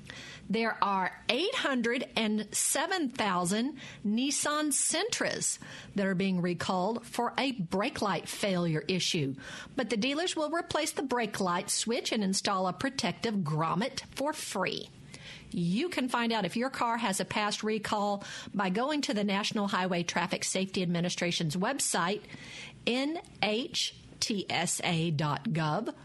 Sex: female